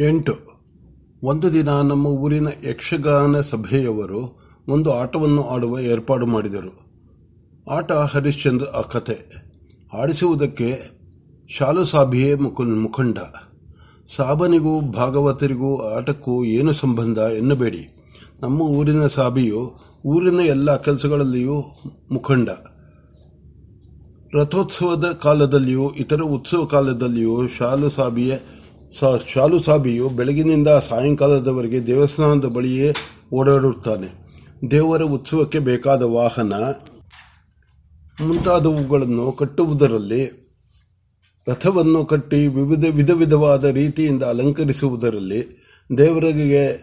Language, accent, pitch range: Kannada, native, 115-145 Hz